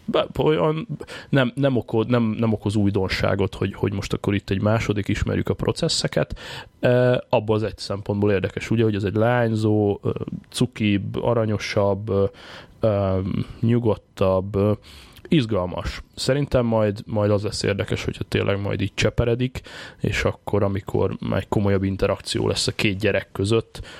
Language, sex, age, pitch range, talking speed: Hungarian, male, 20-39, 100-110 Hz, 140 wpm